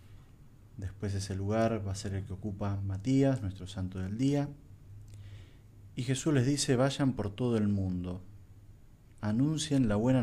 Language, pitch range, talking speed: Spanish, 100-130 Hz, 155 wpm